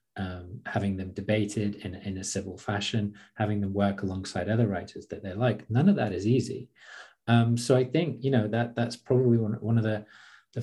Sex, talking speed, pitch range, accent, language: male, 205 wpm, 100-120 Hz, British, English